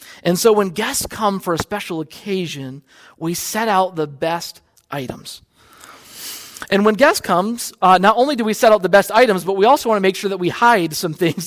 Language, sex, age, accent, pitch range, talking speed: English, male, 40-59, American, 170-215 Hz, 210 wpm